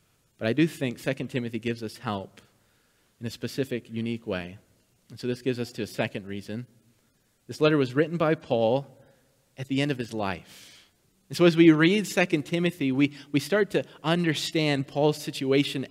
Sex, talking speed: male, 185 wpm